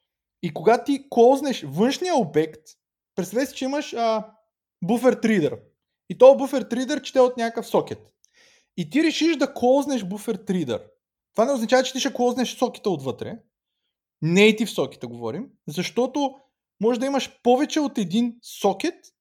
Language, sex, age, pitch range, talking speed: Bulgarian, male, 20-39, 195-260 Hz, 150 wpm